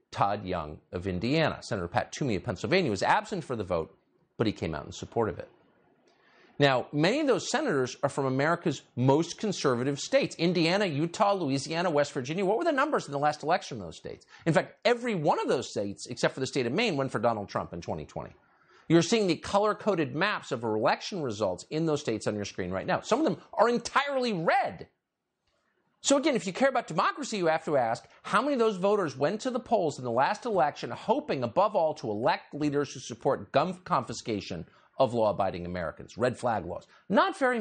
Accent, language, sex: American, English, male